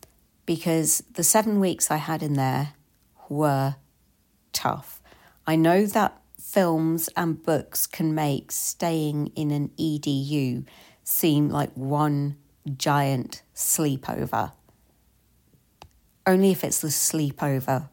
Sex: female